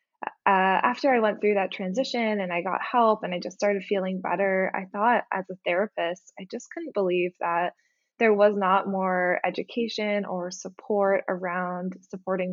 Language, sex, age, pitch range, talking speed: English, female, 20-39, 180-210 Hz, 170 wpm